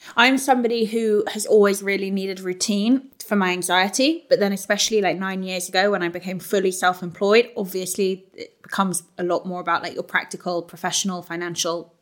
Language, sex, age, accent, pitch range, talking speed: English, female, 20-39, British, 180-215 Hz, 175 wpm